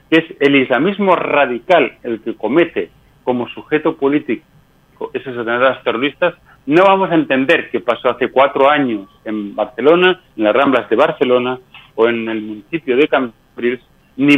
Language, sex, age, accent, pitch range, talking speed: Spanish, male, 40-59, Spanish, 125-160 Hz, 155 wpm